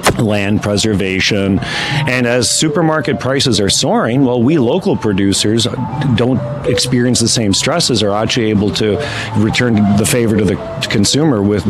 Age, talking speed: 40-59, 145 wpm